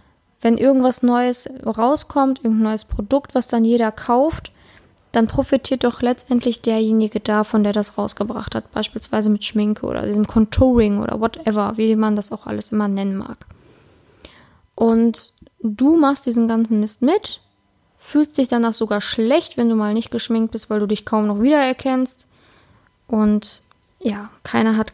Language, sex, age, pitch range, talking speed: German, female, 10-29, 220-255 Hz, 155 wpm